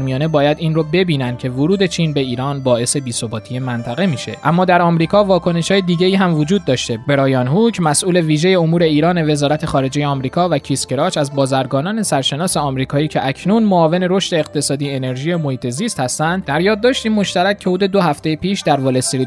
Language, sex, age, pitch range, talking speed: Persian, male, 20-39, 135-180 Hz, 180 wpm